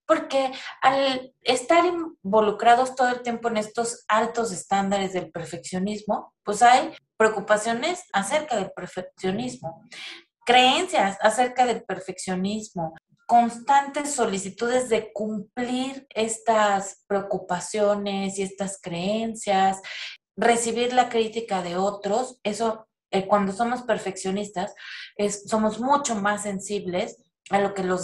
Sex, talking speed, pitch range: female, 110 wpm, 195-235 Hz